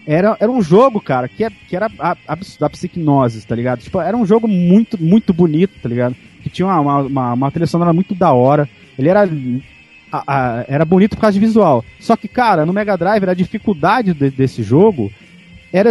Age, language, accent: 30-49, Portuguese, Brazilian